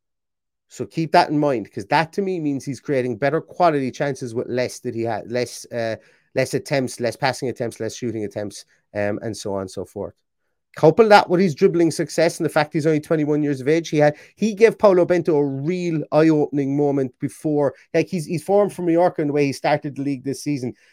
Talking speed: 230 wpm